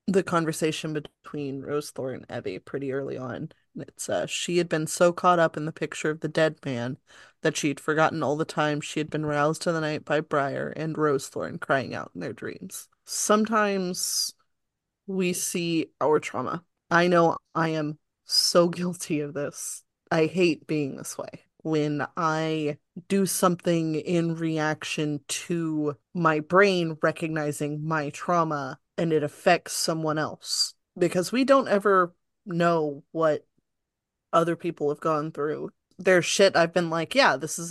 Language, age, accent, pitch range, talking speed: English, 20-39, American, 150-175 Hz, 165 wpm